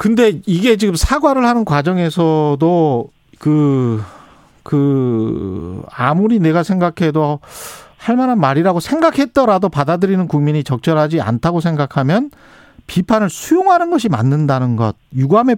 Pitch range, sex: 140-225 Hz, male